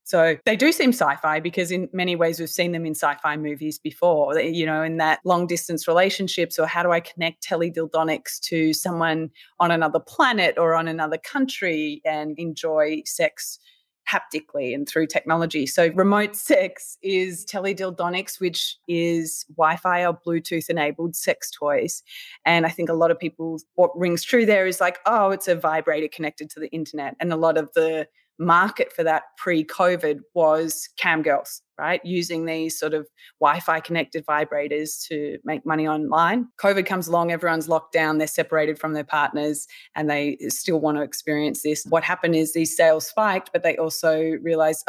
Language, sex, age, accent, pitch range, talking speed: English, female, 30-49, Australian, 155-175 Hz, 175 wpm